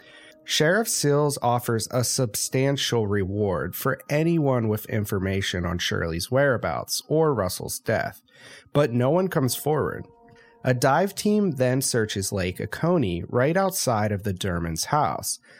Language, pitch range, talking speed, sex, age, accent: English, 105-150 Hz, 130 wpm, male, 30-49, American